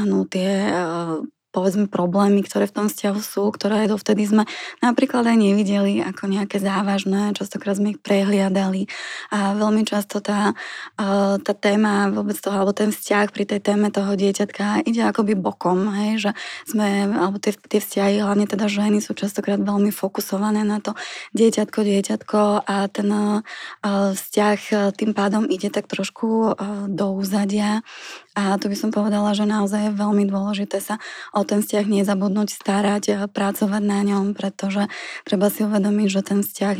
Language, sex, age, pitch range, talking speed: Slovak, female, 20-39, 200-210 Hz, 160 wpm